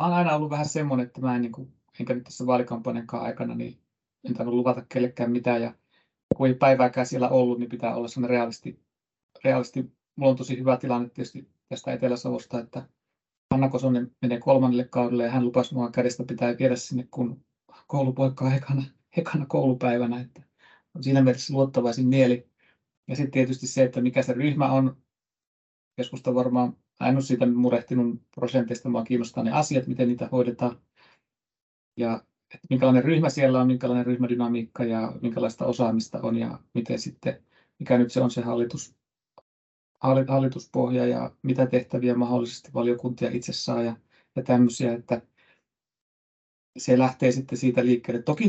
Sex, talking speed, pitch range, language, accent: male, 150 wpm, 120-130 Hz, Finnish, native